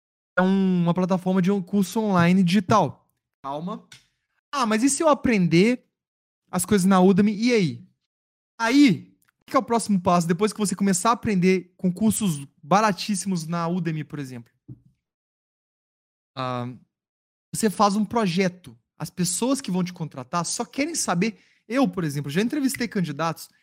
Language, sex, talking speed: Portuguese, male, 155 wpm